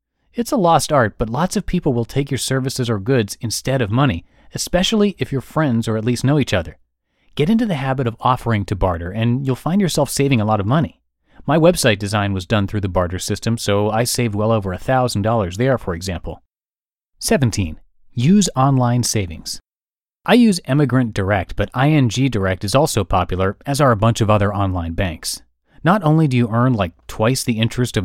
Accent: American